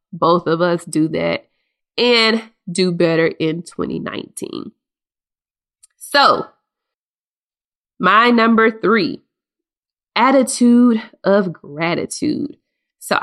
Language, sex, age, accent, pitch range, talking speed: English, female, 20-39, American, 160-200 Hz, 85 wpm